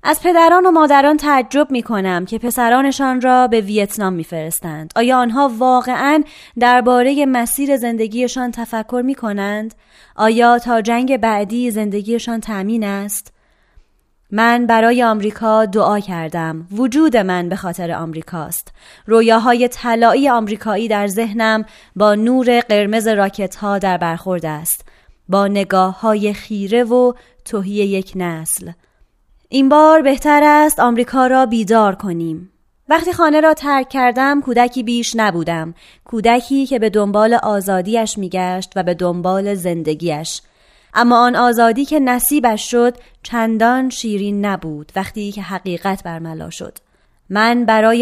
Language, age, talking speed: Persian, 20-39, 125 wpm